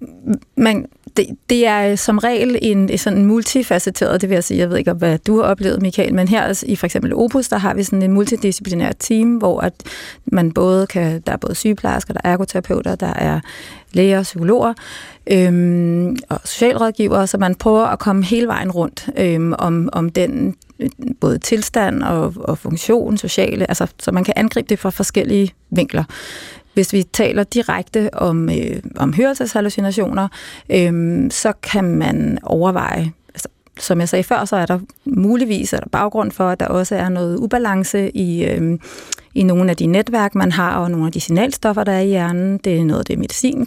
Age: 30-49